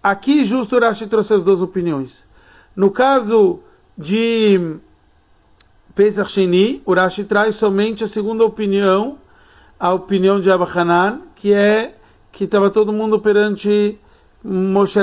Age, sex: 40-59, male